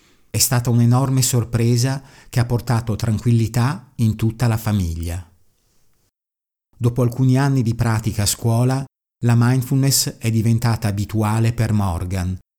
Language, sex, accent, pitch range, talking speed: Italian, male, native, 105-120 Hz, 125 wpm